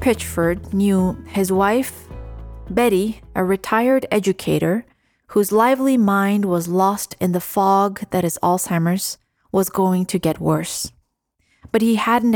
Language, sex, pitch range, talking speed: English, female, 180-215 Hz, 130 wpm